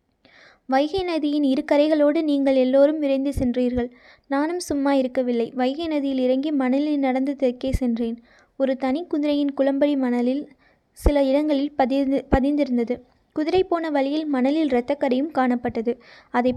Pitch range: 255-295 Hz